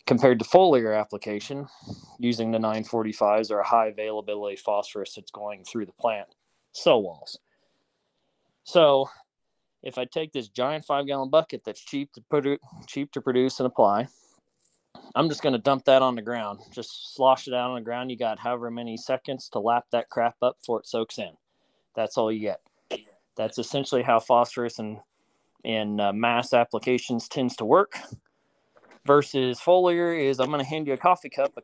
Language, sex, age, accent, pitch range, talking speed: English, male, 30-49, American, 110-140 Hz, 180 wpm